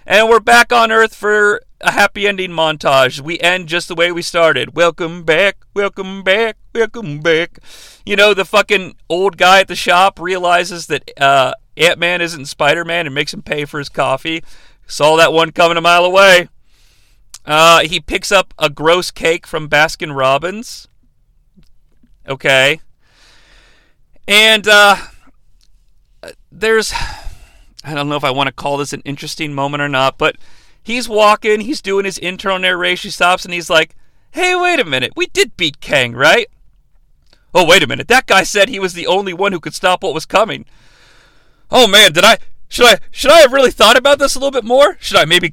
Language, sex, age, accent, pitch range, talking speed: English, male, 40-59, American, 155-205 Hz, 185 wpm